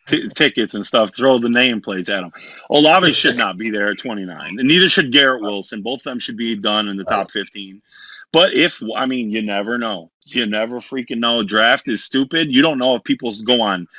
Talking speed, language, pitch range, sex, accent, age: 230 wpm, English, 100-140 Hz, male, American, 30-49